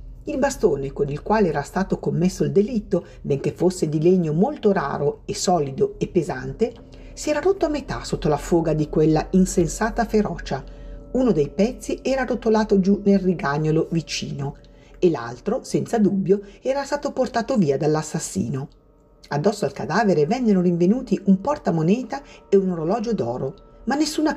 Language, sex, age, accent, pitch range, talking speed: Italian, female, 50-69, native, 165-230 Hz, 155 wpm